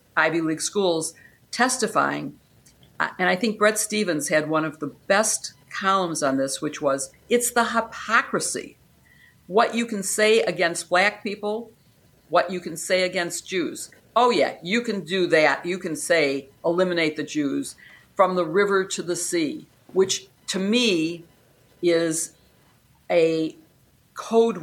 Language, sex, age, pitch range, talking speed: English, female, 50-69, 155-205 Hz, 145 wpm